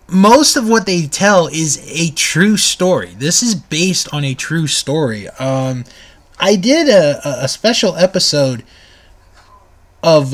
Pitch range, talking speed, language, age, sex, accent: 130-185 Hz, 140 wpm, English, 20-39, male, American